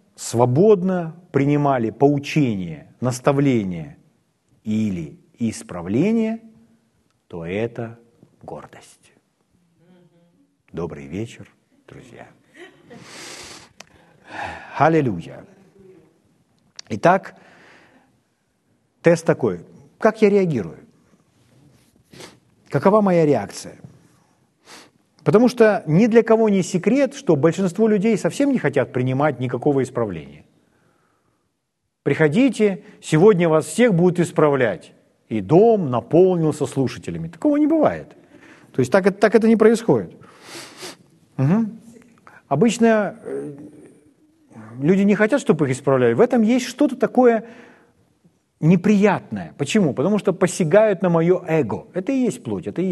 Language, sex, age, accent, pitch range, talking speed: Ukrainian, male, 50-69, native, 145-220 Hz, 95 wpm